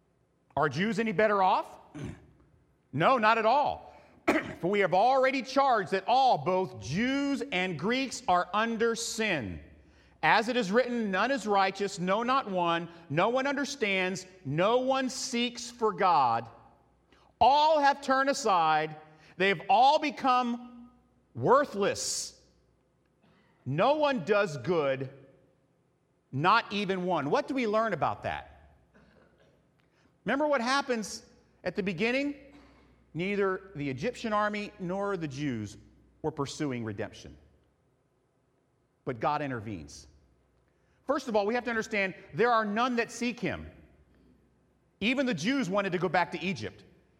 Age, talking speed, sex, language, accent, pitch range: 40-59, 130 wpm, male, English, American, 155-250 Hz